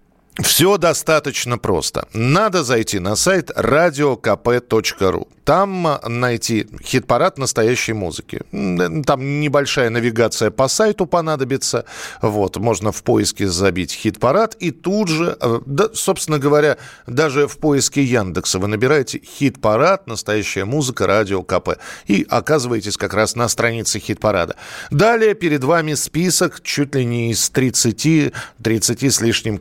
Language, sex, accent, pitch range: Russian, male, native, 110-155 Hz